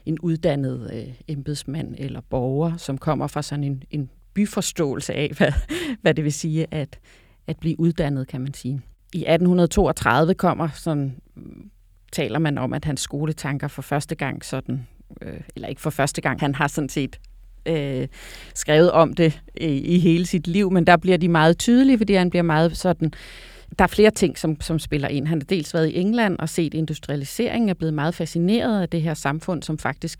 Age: 30-49